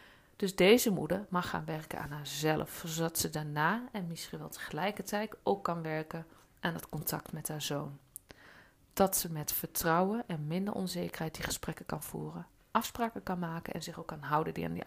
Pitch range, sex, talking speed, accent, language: 160-205 Hz, female, 180 wpm, Dutch, Dutch